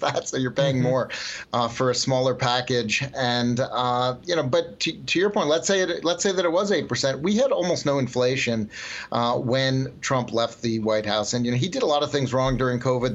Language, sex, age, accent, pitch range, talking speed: English, male, 40-59, American, 120-130 Hz, 235 wpm